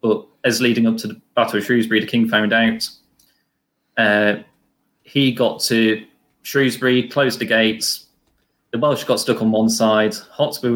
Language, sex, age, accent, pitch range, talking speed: English, male, 20-39, British, 115-130 Hz, 160 wpm